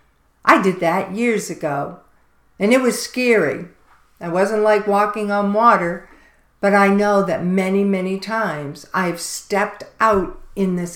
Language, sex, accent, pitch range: English, female, American, 175-225 Hz